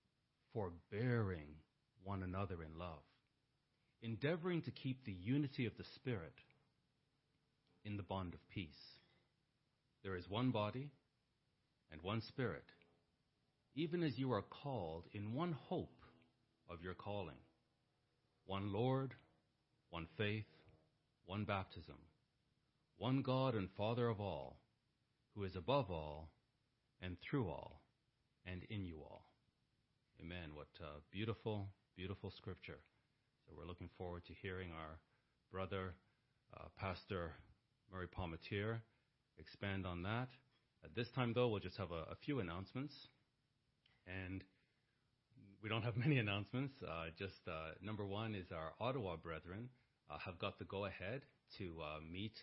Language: English